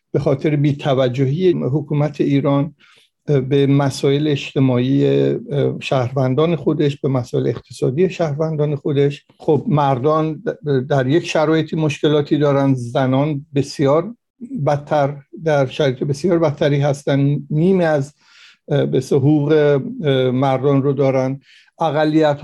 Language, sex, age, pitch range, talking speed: Persian, male, 60-79, 135-155 Hz, 105 wpm